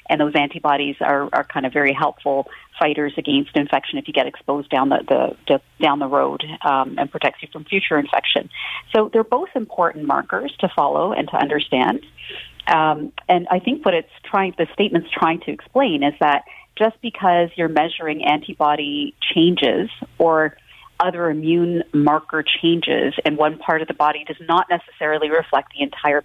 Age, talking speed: 40-59, 175 wpm